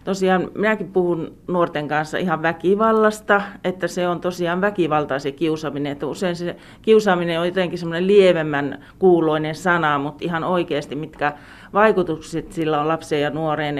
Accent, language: native, Finnish